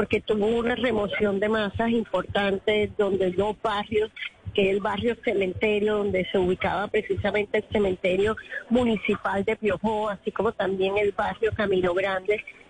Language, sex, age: Spanish, female, 20-39